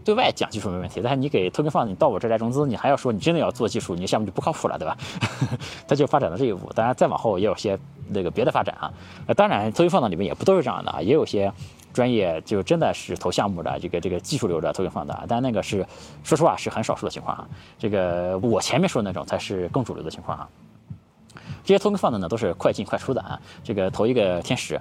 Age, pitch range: 20-39, 95-125 Hz